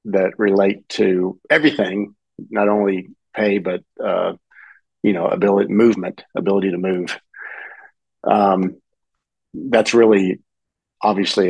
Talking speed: 105 wpm